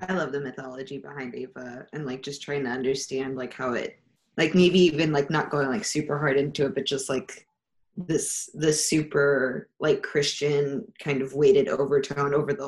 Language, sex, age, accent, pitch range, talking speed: English, female, 20-39, American, 140-175 Hz, 190 wpm